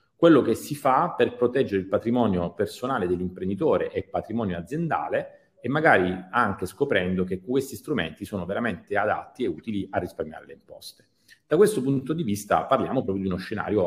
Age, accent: 40-59, native